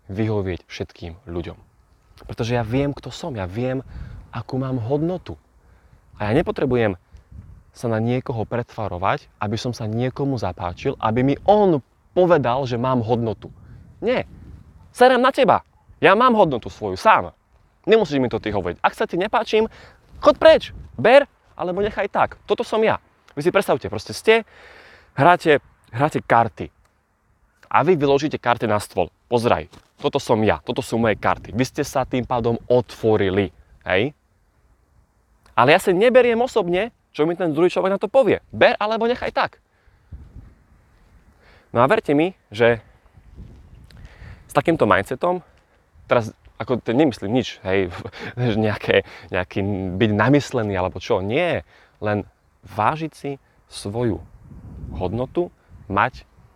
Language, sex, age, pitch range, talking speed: Slovak, male, 20-39, 100-155 Hz, 140 wpm